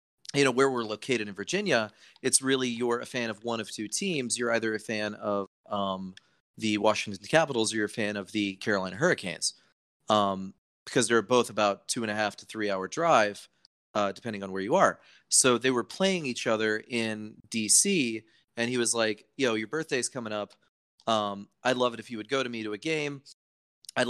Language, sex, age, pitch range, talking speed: English, male, 30-49, 105-125 Hz, 210 wpm